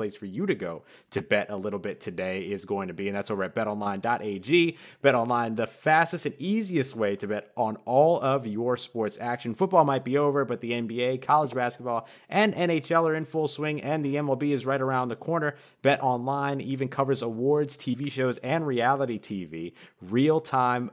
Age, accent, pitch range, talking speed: 30-49, American, 115-150 Hz, 195 wpm